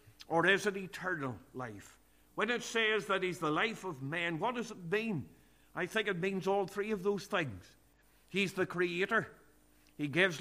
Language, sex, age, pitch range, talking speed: English, male, 50-69, 145-185 Hz, 185 wpm